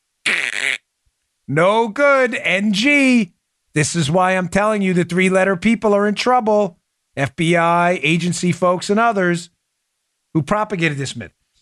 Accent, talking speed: American, 125 wpm